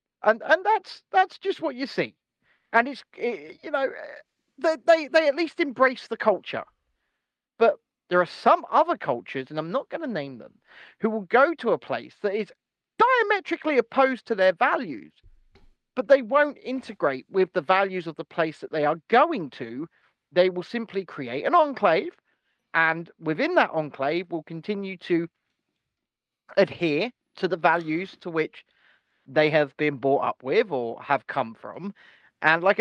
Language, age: English, 40-59